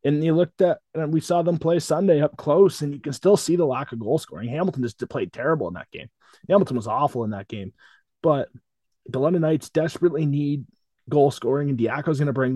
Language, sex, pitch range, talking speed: English, male, 125-150 Hz, 235 wpm